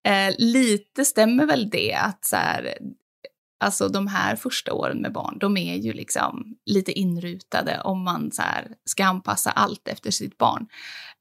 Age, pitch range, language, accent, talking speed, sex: 20-39, 185-250 Hz, Swedish, native, 170 wpm, female